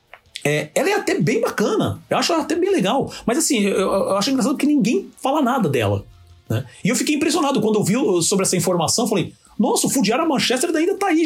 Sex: male